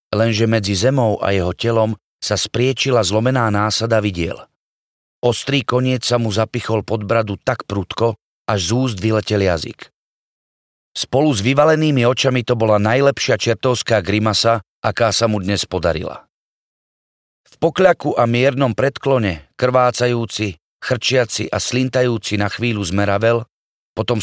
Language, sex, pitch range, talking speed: Slovak, male, 100-120 Hz, 130 wpm